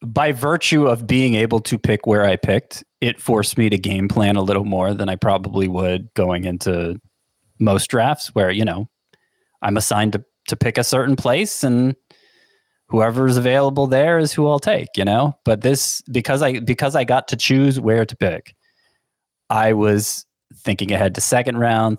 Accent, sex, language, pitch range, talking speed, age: American, male, English, 100-125 Hz, 180 wpm, 30-49